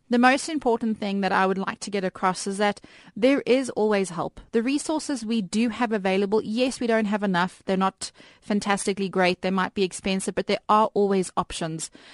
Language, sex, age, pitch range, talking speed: English, female, 30-49, 195-225 Hz, 205 wpm